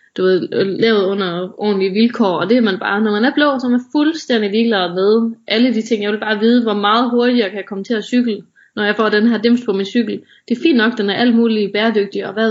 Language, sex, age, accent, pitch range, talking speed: Danish, female, 20-39, native, 200-240 Hz, 285 wpm